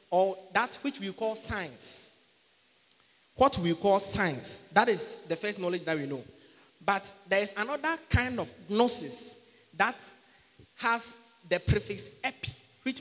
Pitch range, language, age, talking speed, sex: 185-235 Hz, English, 30-49, 145 wpm, male